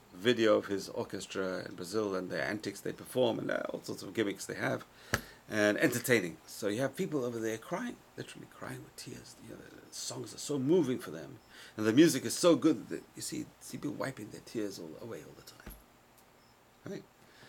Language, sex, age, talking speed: English, male, 40-59, 215 wpm